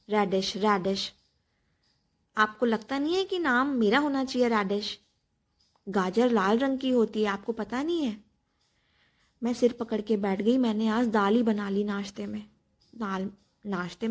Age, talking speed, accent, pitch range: 20-39, 160 wpm, native, 195-235 Hz